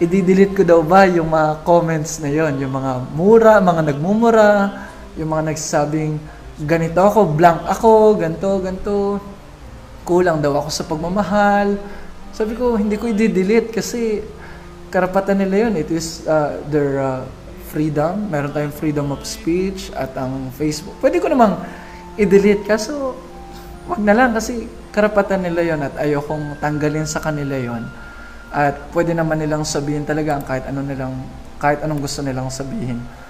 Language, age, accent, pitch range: Filipino, 20-39, native, 145-195 Hz